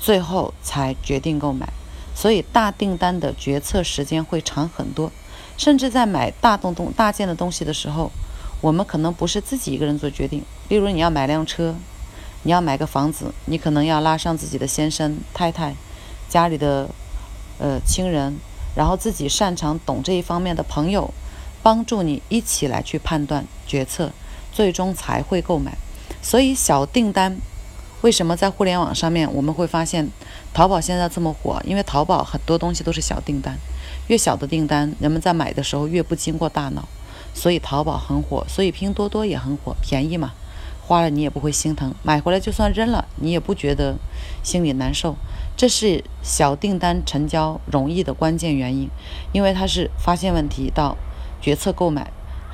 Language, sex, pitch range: Chinese, female, 140-180 Hz